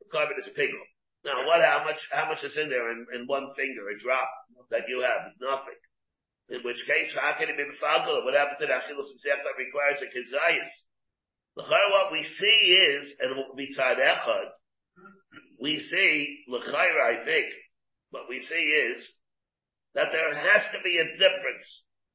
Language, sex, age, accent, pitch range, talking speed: English, male, 50-69, American, 150-205 Hz, 180 wpm